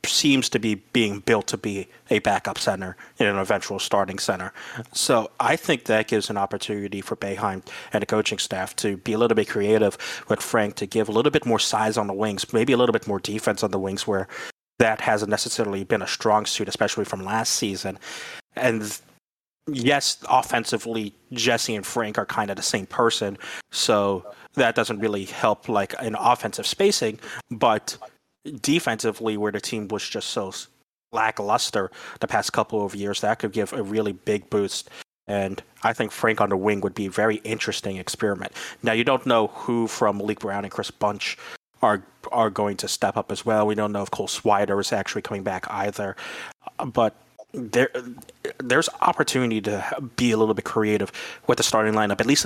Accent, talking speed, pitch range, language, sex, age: American, 190 wpm, 100-115 Hz, English, male, 30-49